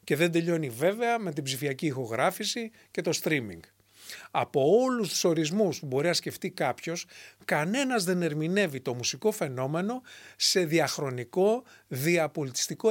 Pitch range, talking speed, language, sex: 130-195 Hz, 135 wpm, English, male